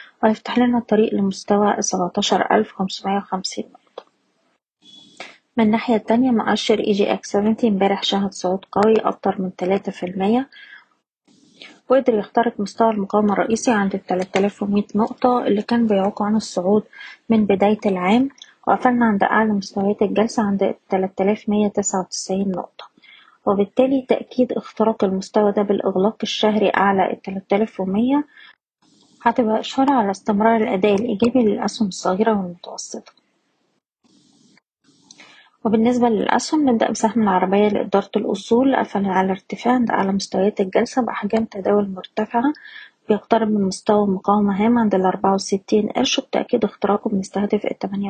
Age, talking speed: 20-39, 120 wpm